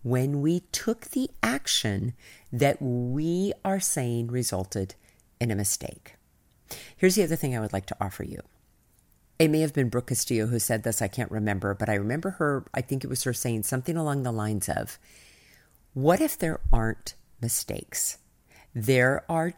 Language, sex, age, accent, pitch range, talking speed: English, female, 50-69, American, 110-160 Hz, 175 wpm